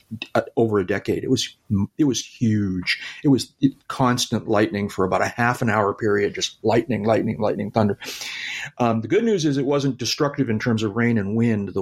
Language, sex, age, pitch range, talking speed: English, male, 40-59, 100-130 Hz, 200 wpm